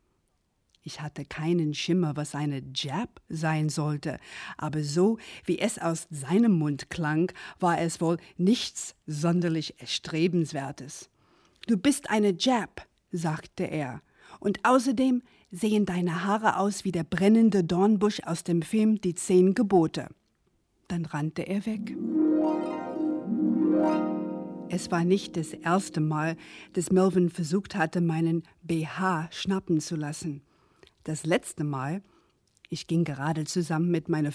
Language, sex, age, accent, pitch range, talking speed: German, female, 50-69, German, 155-195 Hz, 130 wpm